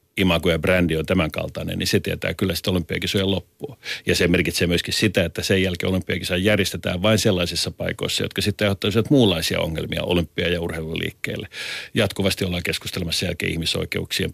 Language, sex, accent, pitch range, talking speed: Finnish, male, native, 85-100 Hz, 160 wpm